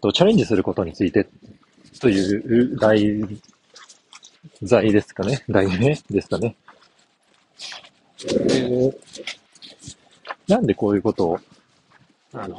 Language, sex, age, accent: Japanese, male, 40-59, native